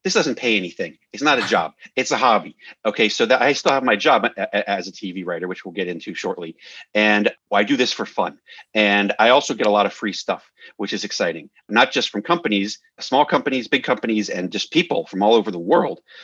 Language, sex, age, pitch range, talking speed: English, male, 40-59, 95-115 Hz, 230 wpm